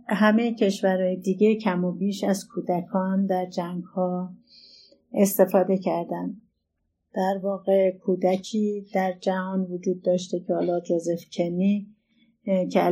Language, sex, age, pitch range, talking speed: Persian, female, 30-49, 180-200 Hz, 115 wpm